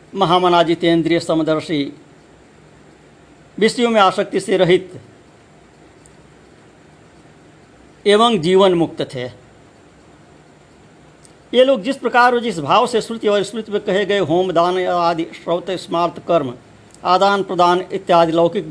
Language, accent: Hindi, native